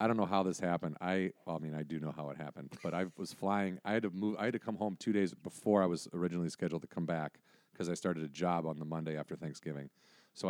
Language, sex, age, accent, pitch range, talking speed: English, male, 40-59, American, 85-105 Hz, 285 wpm